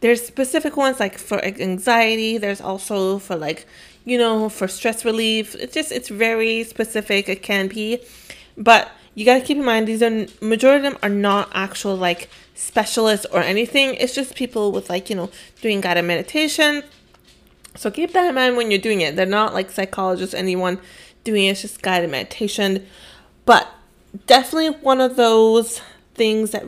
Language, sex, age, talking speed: English, female, 20-39, 180 wpm